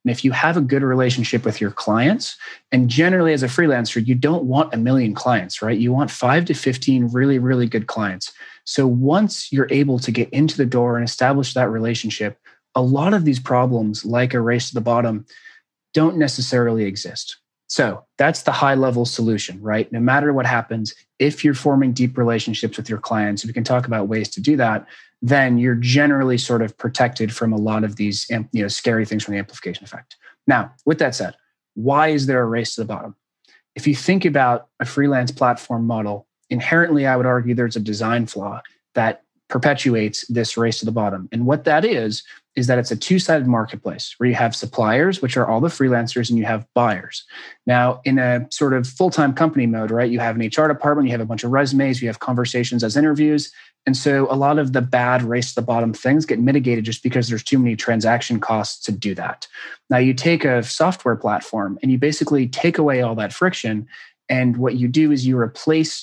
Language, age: English, 30-49